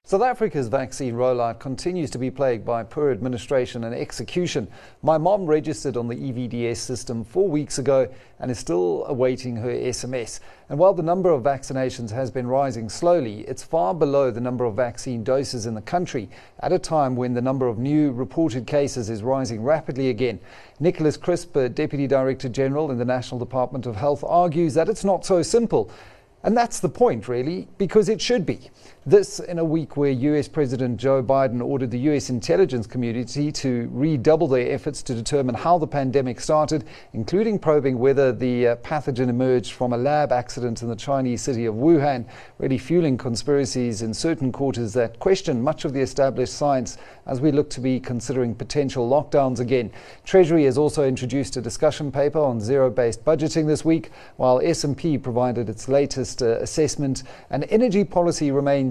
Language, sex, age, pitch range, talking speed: English, male, 40-59, 125-155 Hz, 180 wpm